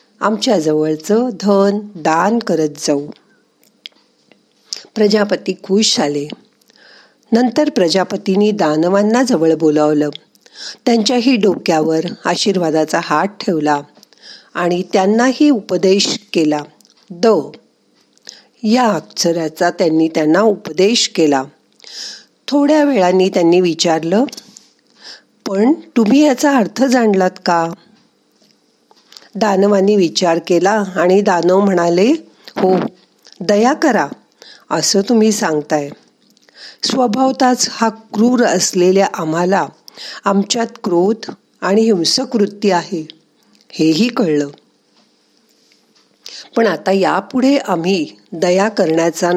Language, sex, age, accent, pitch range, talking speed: Marathi, female, 50-69, native, 170-230 Hz, 85 wpm